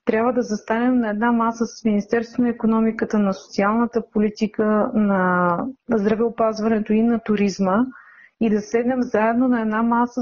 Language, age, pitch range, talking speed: Bulgarian, 30-49, 205-235 Hz, 145 wpm